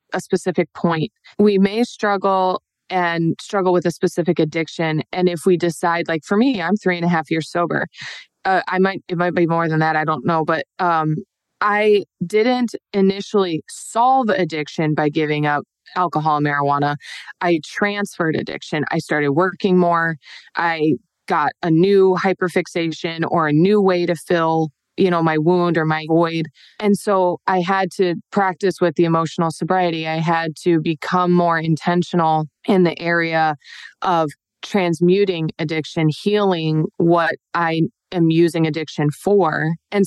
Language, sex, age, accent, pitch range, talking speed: English, female, 20-39, American, 160-190 Hz, 160 wpm